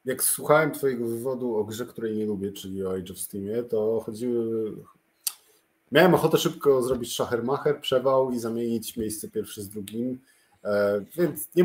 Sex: male